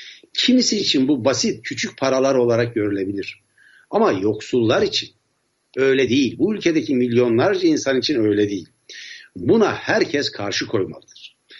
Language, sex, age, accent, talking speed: Turkish, male, 60-79, native, 125 wpm